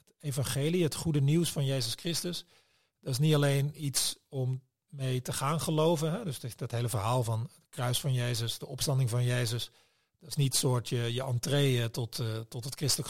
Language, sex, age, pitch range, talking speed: Dutch, male, 40-59, 120-150 Hz, 200 wpm